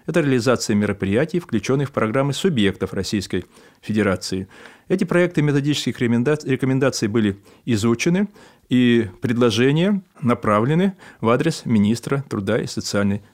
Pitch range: 105-135 Hz